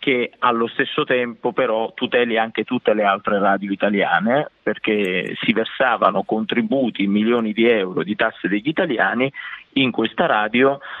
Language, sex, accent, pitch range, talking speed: Italian, male, native, 115-140 Hz, 140 wpm